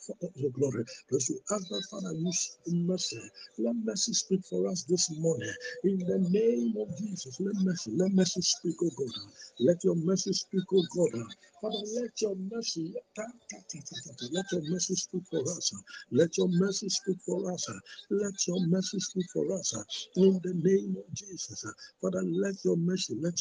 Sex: male